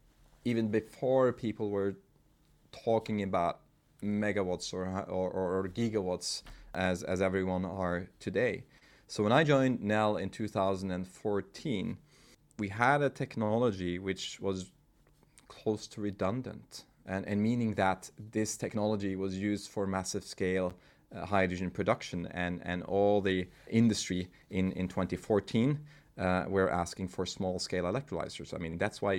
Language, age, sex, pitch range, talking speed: English, 30-49, male, 90-105 Hz, 130 wpm